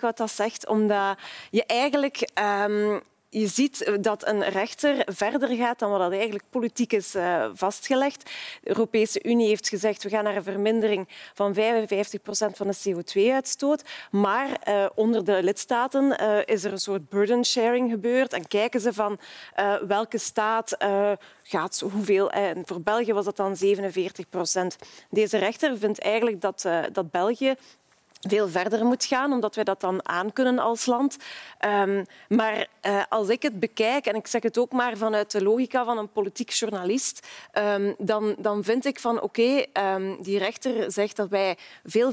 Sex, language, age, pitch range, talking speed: female, Dutch, 30-49, 200-240 Hz, 170 wpm